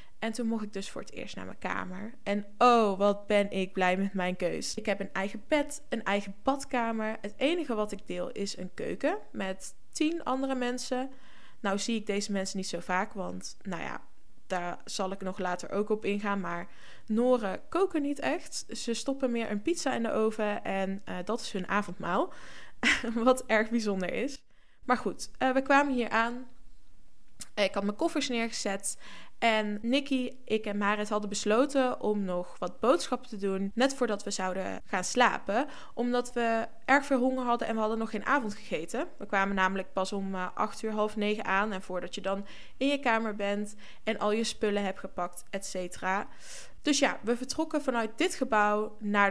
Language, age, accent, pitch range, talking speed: Dutch, 20-39, Dutch, 195-250 Hz, 195 wpm